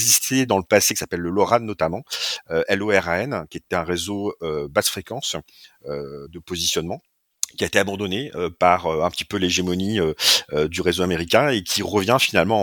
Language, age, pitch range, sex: French, 40-59, 80-100 Hz, male